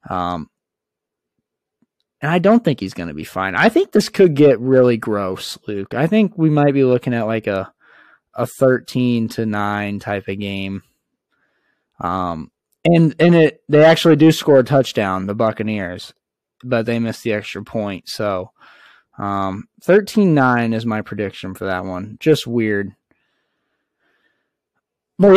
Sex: male